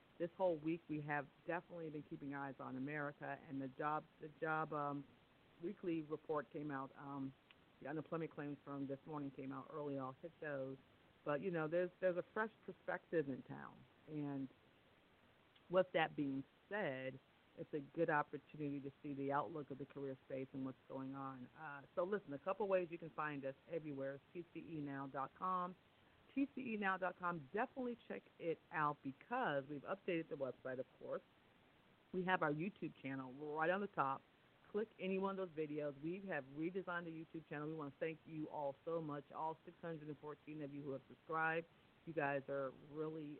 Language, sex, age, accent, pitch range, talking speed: English, female, 50-69, American, 140-170 Hz, 180 wpm